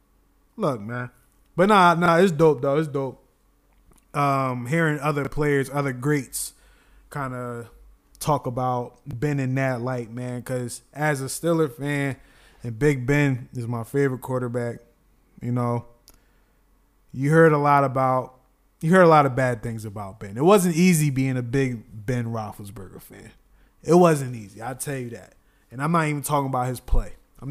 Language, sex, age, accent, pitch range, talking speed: English, male, 20-39, American, 125-150 Hz, 170 wpm